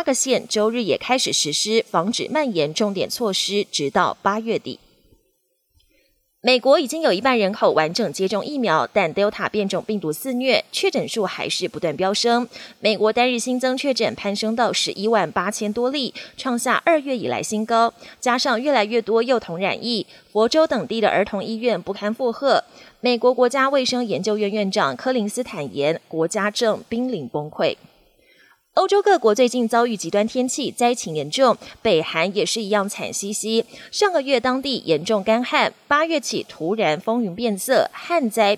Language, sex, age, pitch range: Chinese, female, 20-39, 200-250 Hz